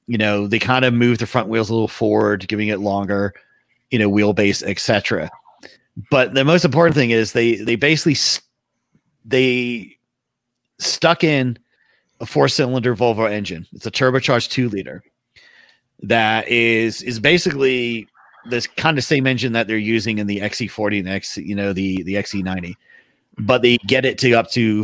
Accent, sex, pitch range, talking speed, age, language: American, male, 105-130 Hz, 175 wpm, 30-49, English